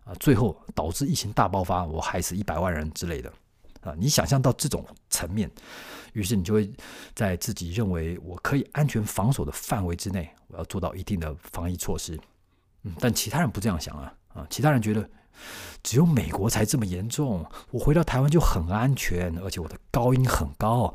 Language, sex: Chinese, male